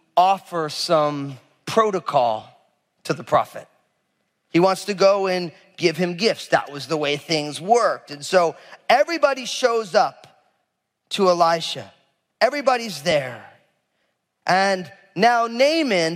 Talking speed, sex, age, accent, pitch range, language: 120 wpm, male, 30-49, American, 145-220 Hz, English